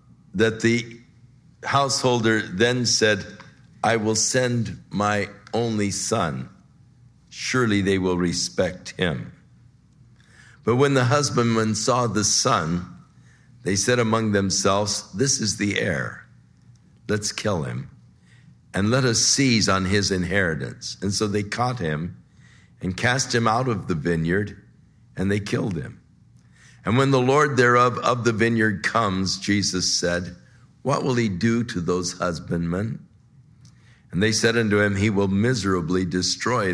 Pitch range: 95-125 Hz